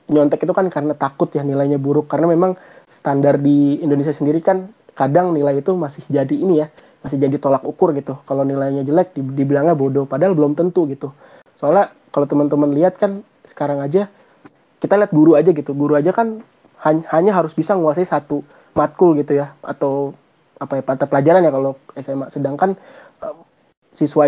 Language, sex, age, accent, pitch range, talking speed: Indonesian, male, 20-39, native, 140-170 Hz, 165 wpm